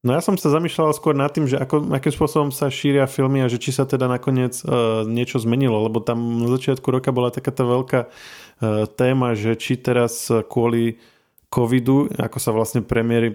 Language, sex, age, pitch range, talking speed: Slovak, male, 20-39, 110-130 Hz, 195 wpm